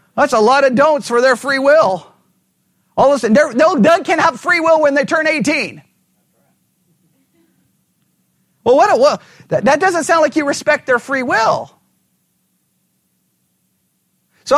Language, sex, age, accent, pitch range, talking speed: English, male, 40-59, American, 230-310 Hz, 160 wpm